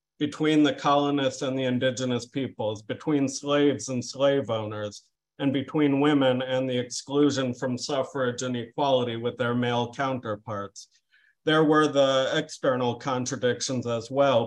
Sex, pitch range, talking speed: male, 120-140 Hz, 135 wpm